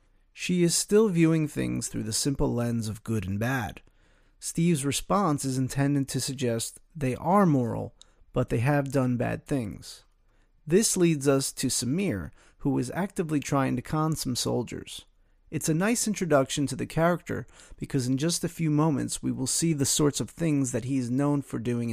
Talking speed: 185 wpm